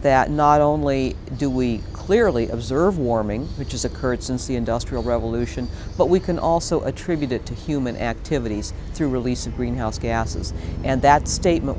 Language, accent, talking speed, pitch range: English, American, 165 wpm, 120-160 Hz